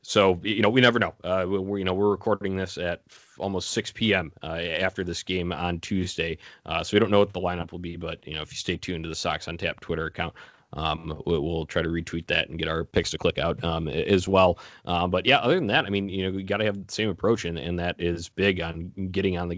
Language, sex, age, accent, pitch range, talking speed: English, male, 20-39, American, 85-100 Hz, 280 wpm